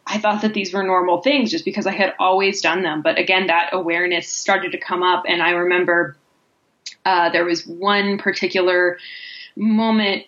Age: 10-29